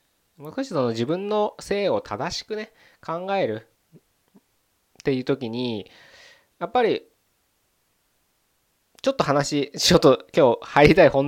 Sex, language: male, Japanese